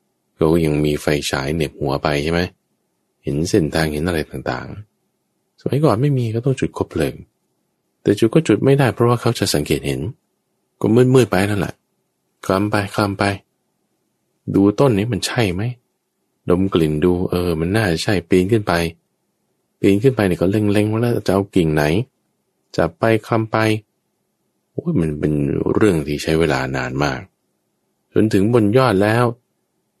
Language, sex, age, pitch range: English, male, 20-39, 80-105 Hz